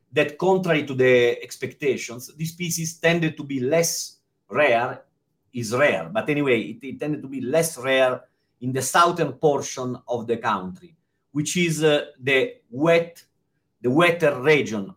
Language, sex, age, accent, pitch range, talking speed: English, male, 40-59, Italian, 120-160 Hz, 150 wpm